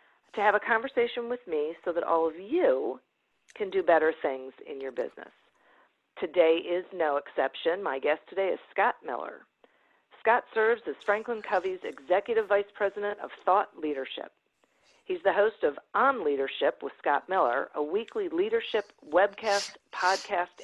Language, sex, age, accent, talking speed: English, female, 50-69, American, 155 wpm